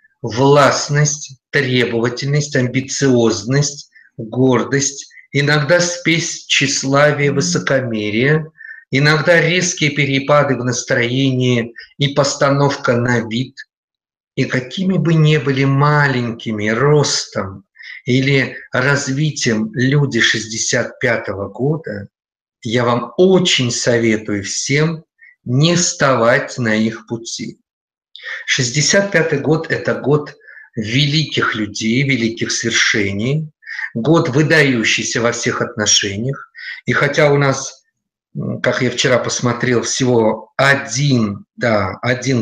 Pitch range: 120-155 Hz